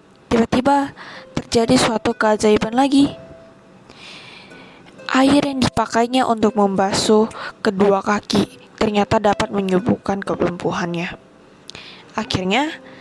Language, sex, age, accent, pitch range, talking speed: Indonesian, female, 10-29, native, 195-225 Hz, 80 wpm